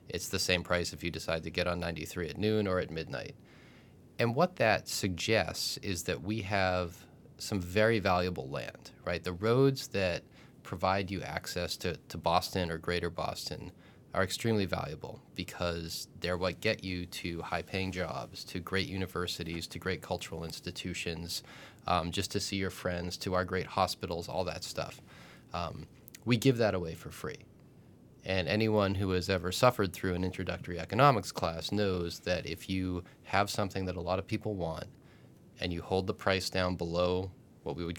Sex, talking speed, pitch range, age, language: male, 175 wpm, 90-105 Hz, 30-49, English